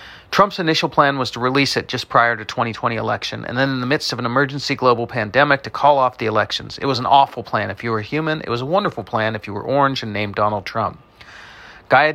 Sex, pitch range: male, 110-135 Hz